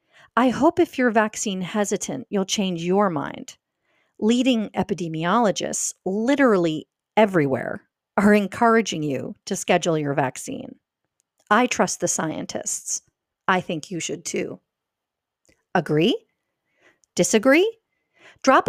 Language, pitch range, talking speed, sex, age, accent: English, 175-250 Hz, 105 wpm, female, 40-59, American